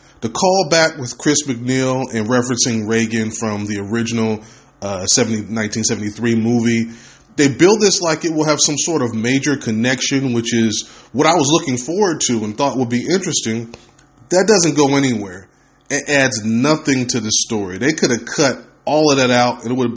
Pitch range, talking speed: 115-145 Hz, 185 wpm